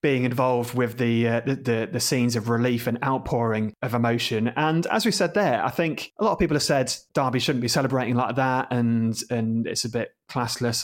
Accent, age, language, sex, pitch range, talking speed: British, 30-49, English, male, 120-145 Hz, 215 wpm